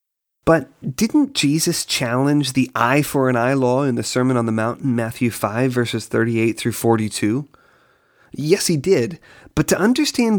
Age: 30-49